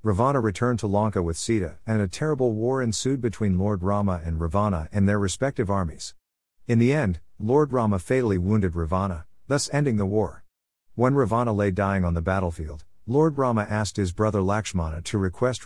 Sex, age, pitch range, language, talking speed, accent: male, 50-69, 90-115 Hz, English, 180 wpm, American